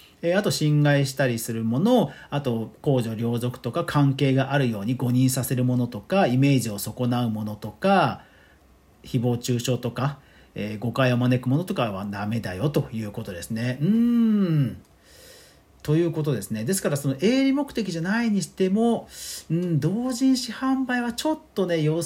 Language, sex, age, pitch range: Japanese, male, 40-59, 125-205 Hz